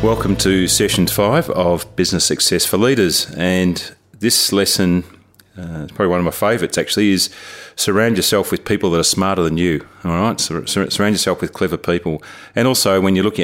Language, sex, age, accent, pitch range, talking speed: English, male, 30-49, Australian, 85-95 Hz, 195 wpm